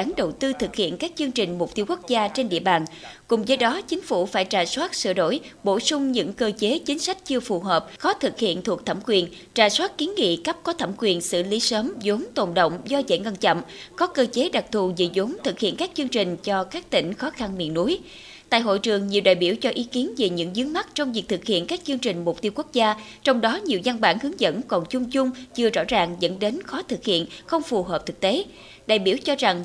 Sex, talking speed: female, 260 wpm